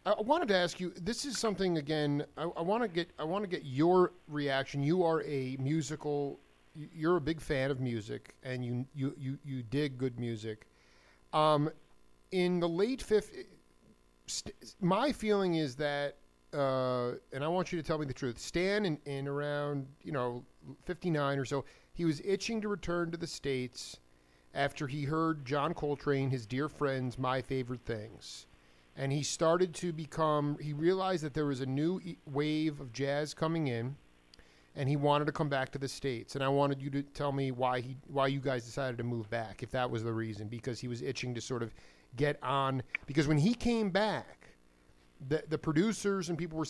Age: 40-59